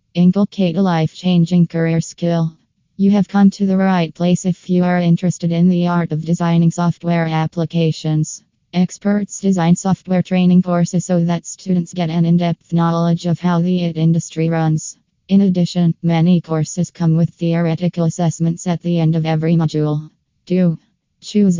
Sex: female